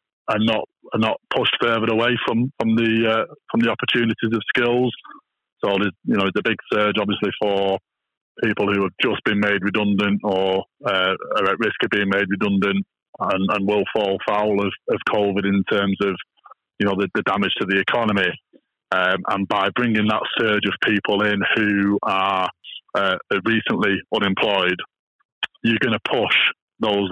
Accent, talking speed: British, 175 wpm